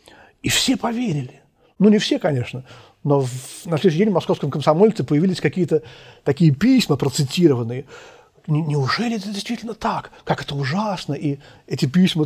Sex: male